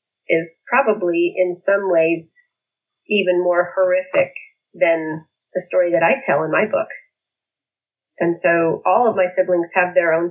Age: 30-49